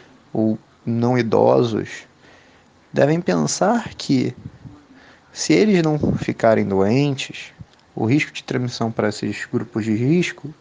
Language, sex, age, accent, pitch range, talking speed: Portuguese, male, 20-39, Brazilian, 115-155 Hz, 115 wpm